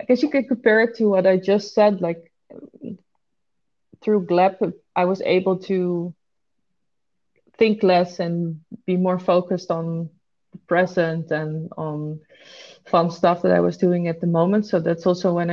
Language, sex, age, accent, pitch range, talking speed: English, female, 20-39, Dutch, 165-185 Hz, 160 wpm